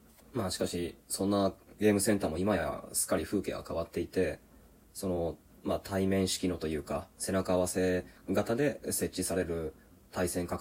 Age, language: 20-39, Japanese